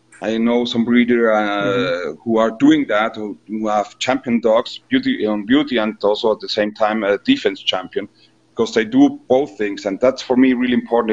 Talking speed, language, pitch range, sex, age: 200 wpm, English, 115-140 Hz, male, 40-59